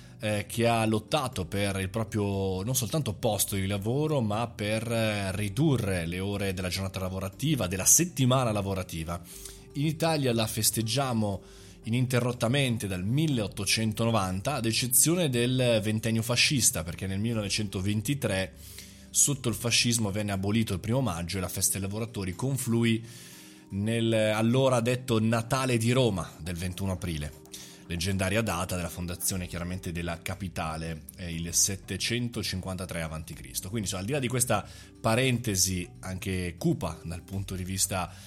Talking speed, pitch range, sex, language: 135 wpm, 95-115 Hz, male, Italian